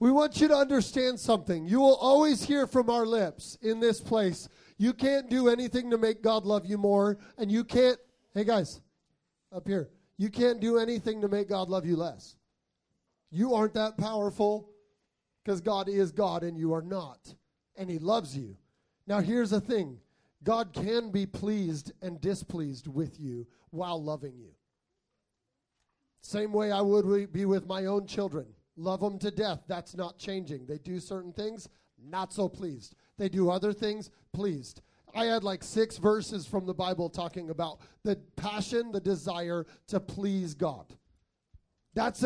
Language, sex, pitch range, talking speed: English, male, 175-220 Hz, 170 wpm